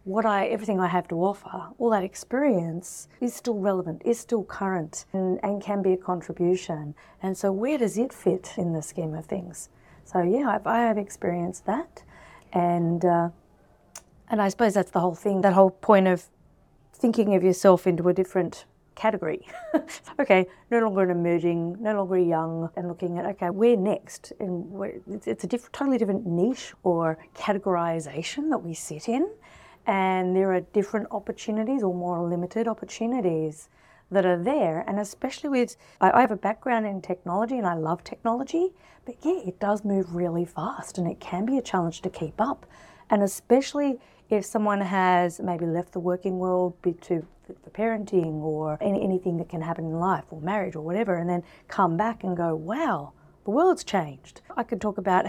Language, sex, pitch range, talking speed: English, female, 175-225 Hz, 180 wpm